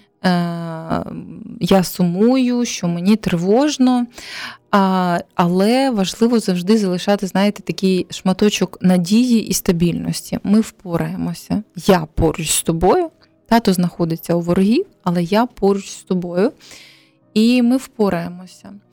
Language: Ukrainian